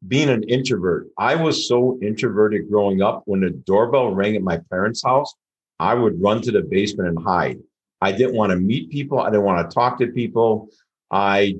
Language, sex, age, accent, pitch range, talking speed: English, male, 50-69, American, 100-125 Hz, 200 wpm